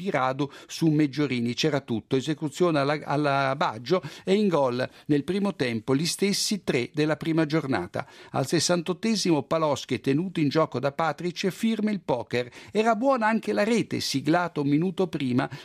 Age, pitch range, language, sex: 50-69, 135-185 Hz, Italian, male